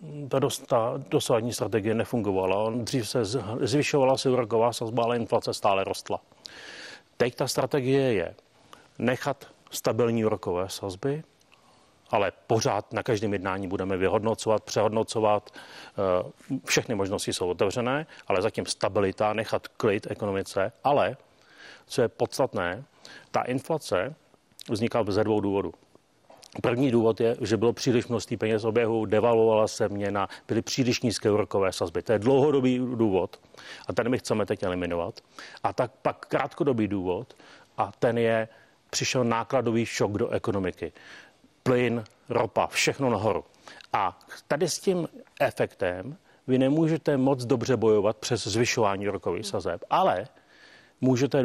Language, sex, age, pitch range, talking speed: Czech, male, 40-59, 110-130 Hz, 130 wpm